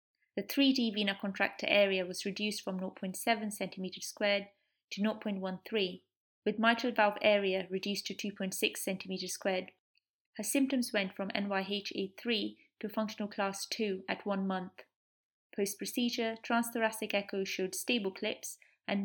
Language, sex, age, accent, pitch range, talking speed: English, female, 20-39, British, 195-220 Hz, 125 wpm